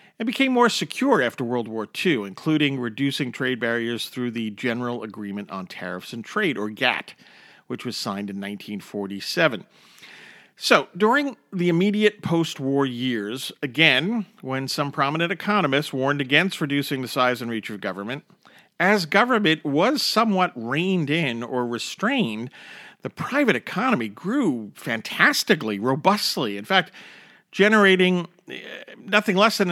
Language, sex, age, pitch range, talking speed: English, male, 50-69, 125-205 Hz, 135 wpm